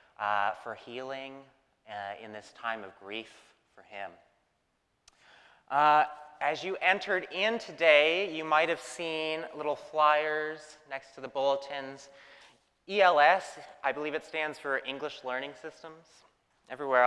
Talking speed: 130 wpm